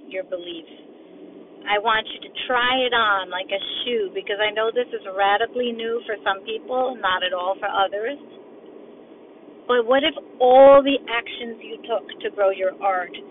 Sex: female